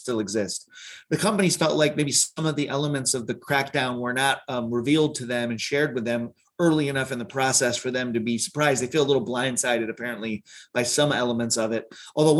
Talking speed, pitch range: 225 wpm, 130-165 Hz